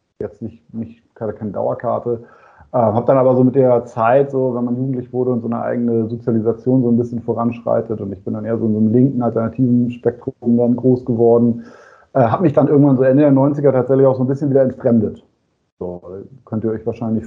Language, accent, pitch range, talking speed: German, German, 110-125 Hz, 220 wpm